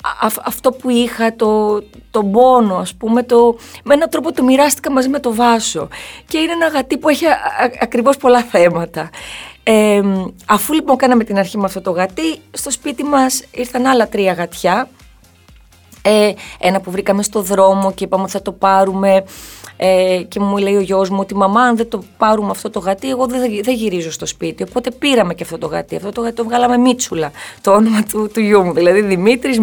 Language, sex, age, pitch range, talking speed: Greek, female, 20-39, 185-250 Hz, 200 wpm